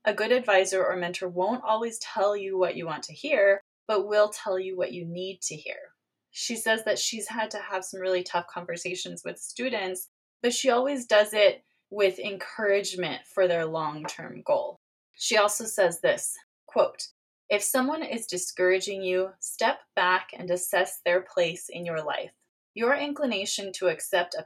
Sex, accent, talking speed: female, American, 175 wpm